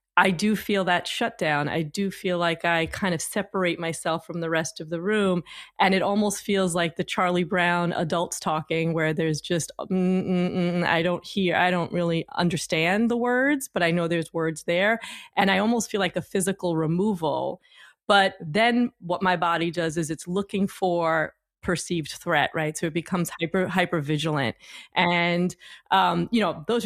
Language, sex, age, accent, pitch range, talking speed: English, female, 30-49, American, 165-200 Hz, 185 wpm